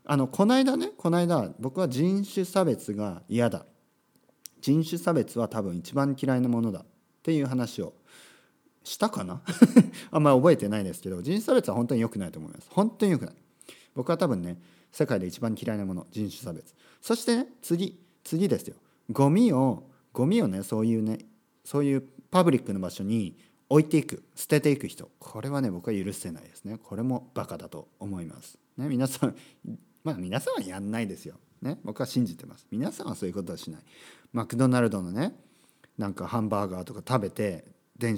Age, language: 40-59, Japanese